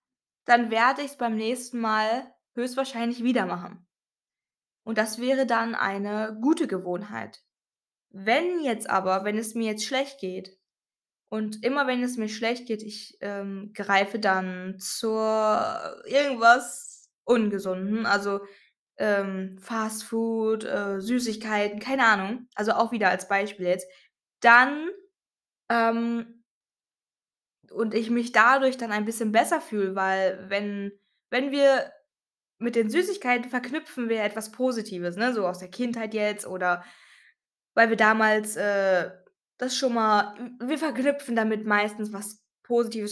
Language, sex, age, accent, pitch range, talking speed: German, female, 20-39, German, 200-245 Hz, 135 wpm